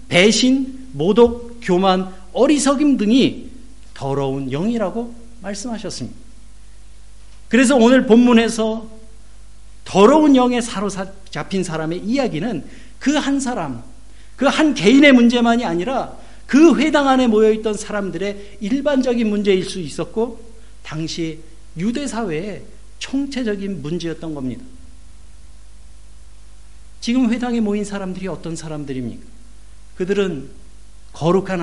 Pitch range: 170-245 Hz